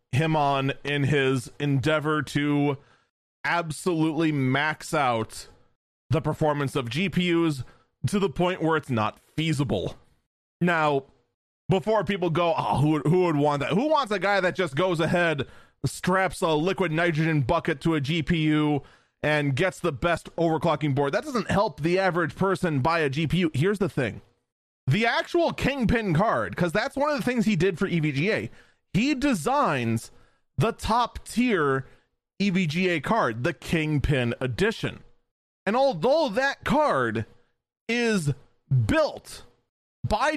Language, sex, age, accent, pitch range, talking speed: English, male, 20-39, American, 145-195 Hz, 140 wpm